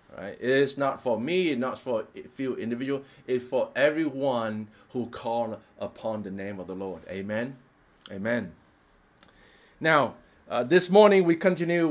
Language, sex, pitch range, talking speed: English, male, 120-155 Hz, 160 wpm